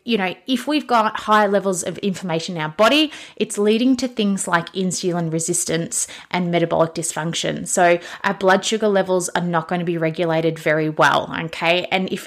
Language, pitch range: English, 175-215 Hz